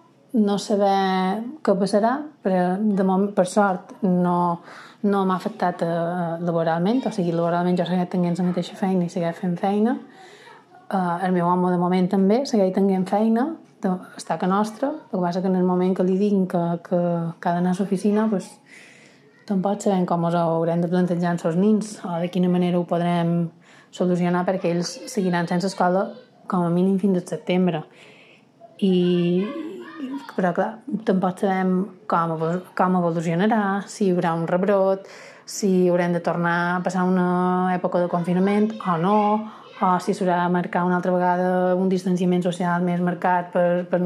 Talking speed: 170 wpm